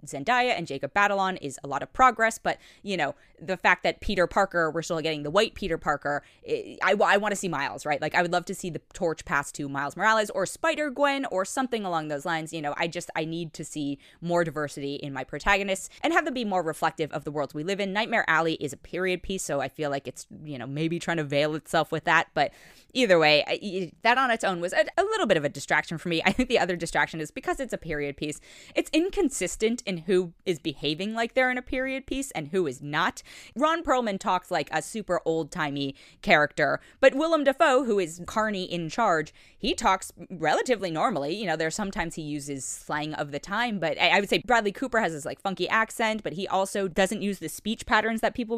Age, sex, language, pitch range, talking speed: 20-39, female, English, 155-225 Hz, 240 wpm